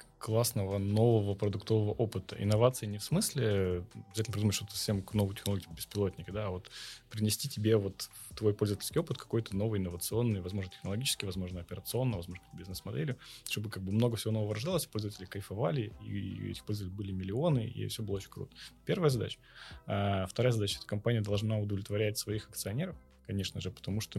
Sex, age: male, 20-39